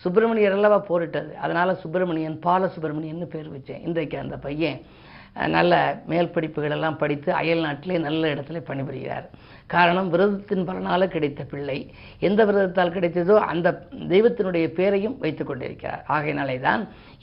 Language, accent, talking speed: Tamil, native, 120 wpm